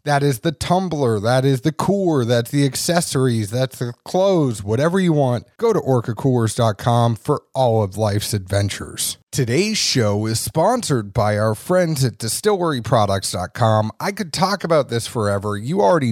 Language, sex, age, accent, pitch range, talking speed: English, male, 30-49, American, 110-150 Hz, 155 wpm